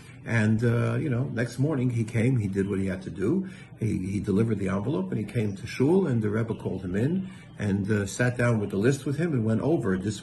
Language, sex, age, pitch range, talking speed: English, male, 60-79, 110-135 Hz, 260 wpm